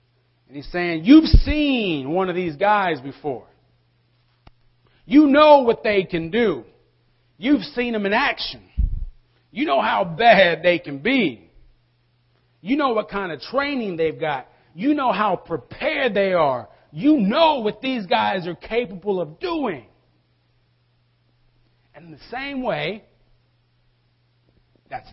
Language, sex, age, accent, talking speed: English, male, 40-59, American, 135 wpm